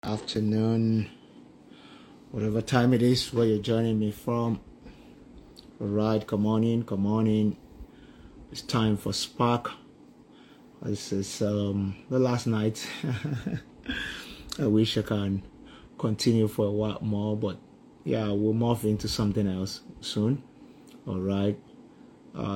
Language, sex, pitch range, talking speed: English, male, 100-110 Hz, 120 wpm